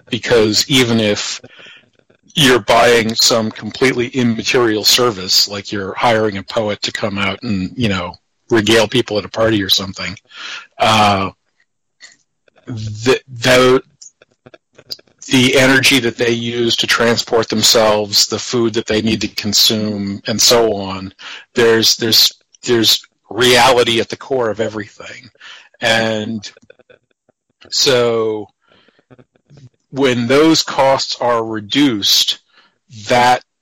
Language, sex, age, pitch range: English, male, 40-59, 105-120 Hz